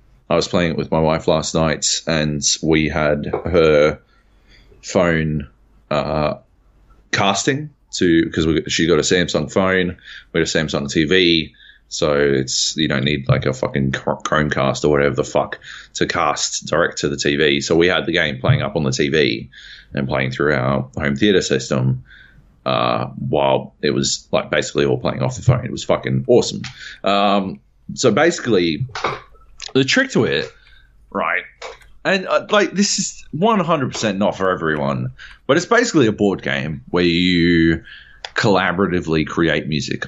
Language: English